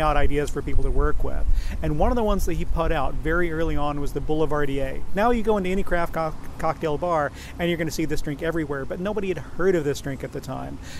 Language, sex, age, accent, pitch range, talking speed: English, male, 40-59, American, 140-170 Hz, 255 wpm